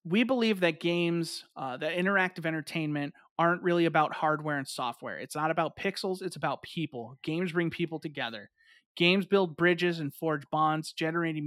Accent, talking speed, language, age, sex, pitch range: American, 170 wpm, English, 30-49, male, 150-175 Hz